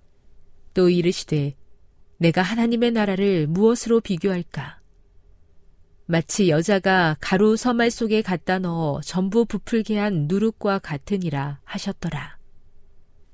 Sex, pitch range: female, 145-205 Hz